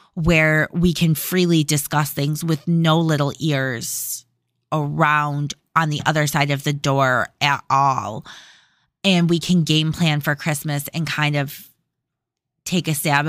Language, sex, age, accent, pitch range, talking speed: English, female, 20-39, American, 145-190 Hz, 150 wpm